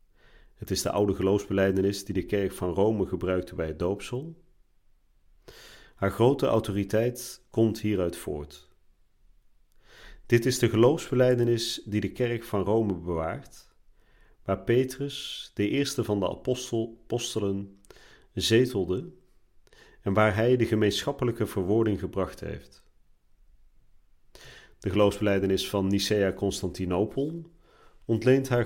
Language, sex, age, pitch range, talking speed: Dutch, male, 40-59, 95-115 Hz, 110 wpm